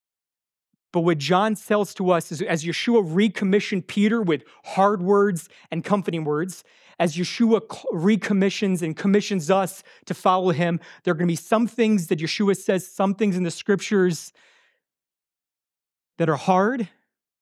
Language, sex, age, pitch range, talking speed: English, male, 30-49, 165-200 Hz, 150 wpm